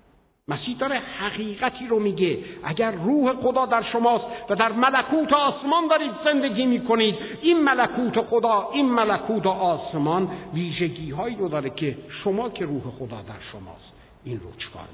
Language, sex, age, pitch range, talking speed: Persian, male, 60-79, 135-205 Hz, 145 wpm